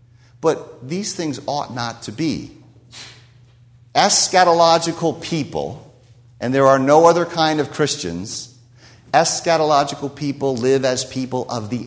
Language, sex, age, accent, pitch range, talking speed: English, male, 50-69, American, 125-175 Hz, 120 wpm